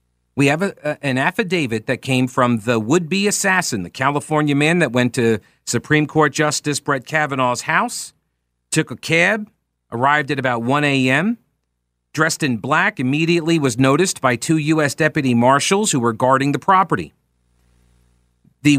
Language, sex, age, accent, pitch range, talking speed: English, male, 40-59, American, 110-170 Hz, 150 wpm